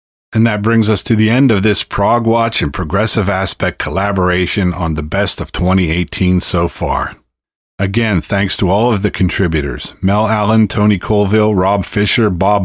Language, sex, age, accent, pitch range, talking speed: English, male, 50-69, American, 80-105 Hz, 170 wpm